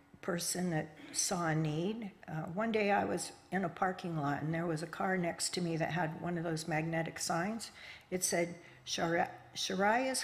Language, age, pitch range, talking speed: English, 60-79, 165-205 Hz, 190 wpm